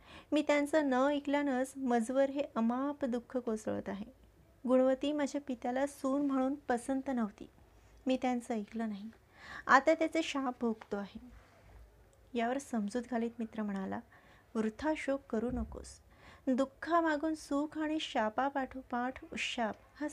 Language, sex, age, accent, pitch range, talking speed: Marathi, female, 30-49, native, 230-285 Hz, 130 wpm